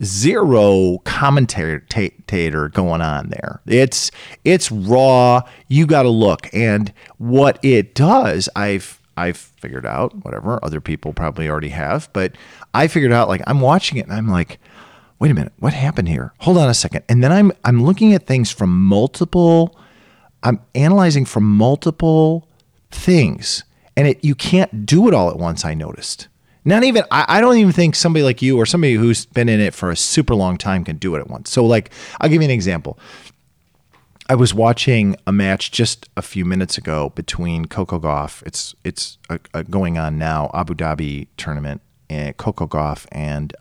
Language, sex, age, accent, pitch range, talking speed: English, male, 40-59, American, 80-135 Hz, 175 wpm